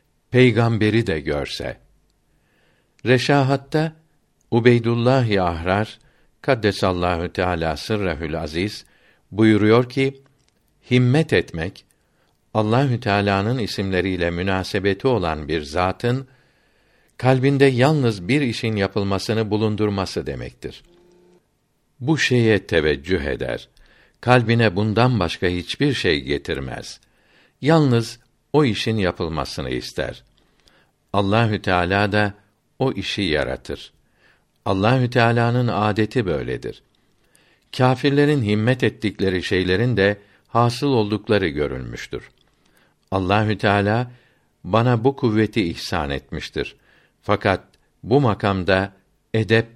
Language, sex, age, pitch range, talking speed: Turkish, male, 60-79, 95-125 Hz, 85 wpm